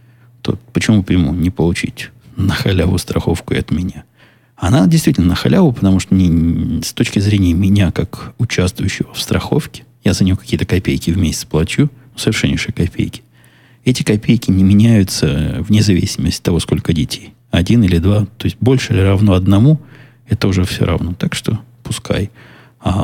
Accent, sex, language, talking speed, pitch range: native, male, Russian, 165 wpm, 90-120 Hz